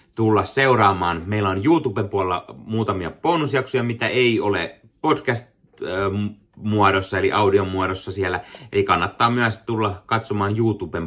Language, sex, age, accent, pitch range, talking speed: Finnish, male, 30-49, native, 85-120 Hz, 120 wpm